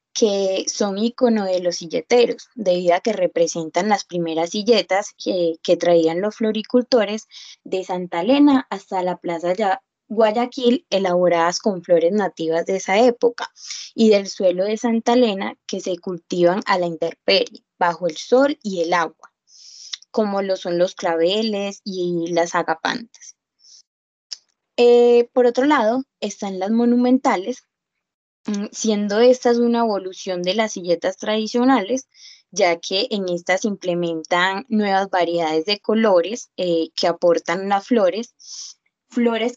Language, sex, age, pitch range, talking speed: English, female, 20-39, 180-235 Hz, 135 wpm